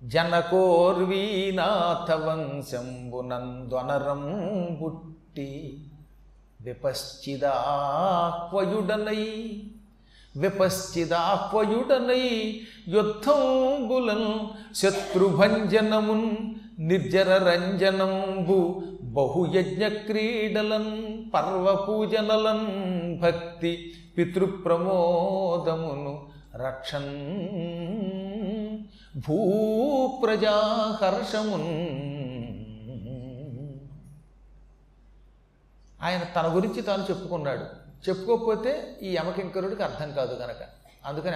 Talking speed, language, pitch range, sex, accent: 40 wpm, Telugu, 155-215 Hz, male, native